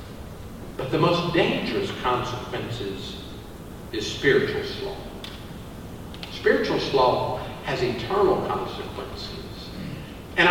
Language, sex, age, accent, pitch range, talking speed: English, male, 50-69, American, 115-155 Hz, 75 wpm